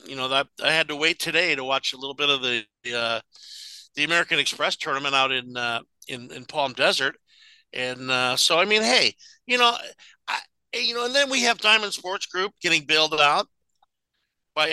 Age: 50-69